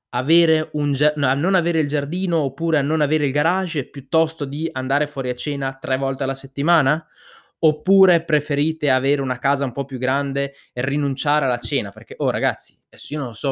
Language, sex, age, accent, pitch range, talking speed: Italian, male, 20-39, native, 120-145 Hz, 200 wpm